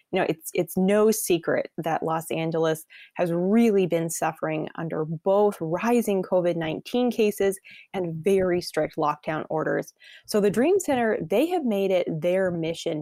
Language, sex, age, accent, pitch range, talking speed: English, female, 20-39, American, 165-215 Hz, 150 wpm